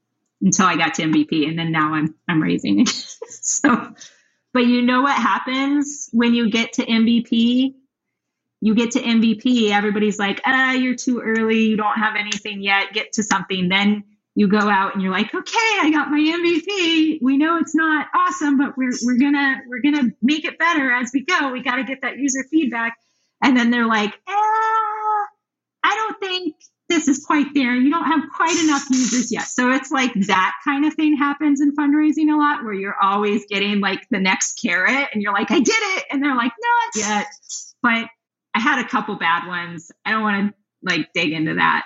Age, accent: 30-49, American